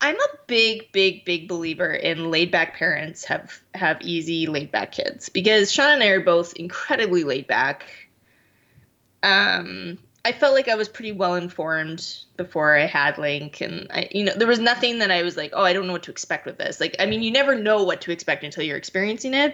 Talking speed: 210 wpm